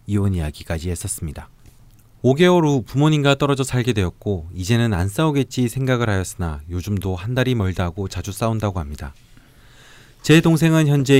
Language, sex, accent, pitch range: Korean, male, native, 100-135 Hz